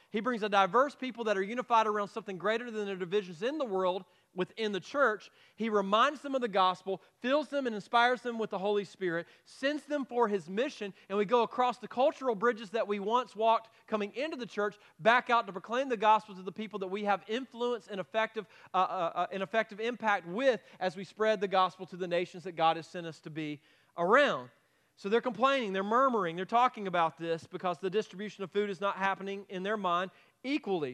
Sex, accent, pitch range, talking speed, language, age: male, American, 190-240 Hz, 220 wpm, English, 40-59